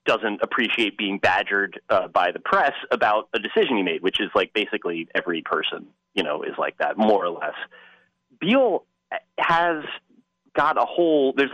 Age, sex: 30-49, male